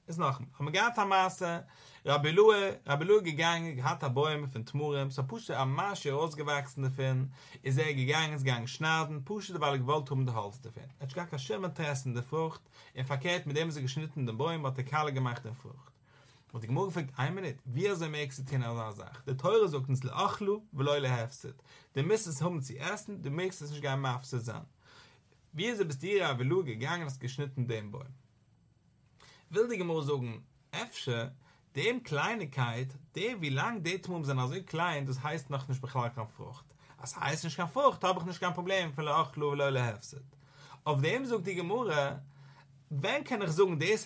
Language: English